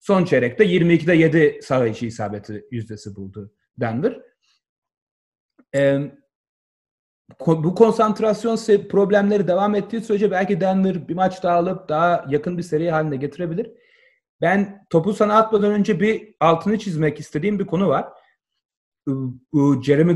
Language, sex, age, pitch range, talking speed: Turkish, male, 40-59, 145-205 Hz, 120 wpm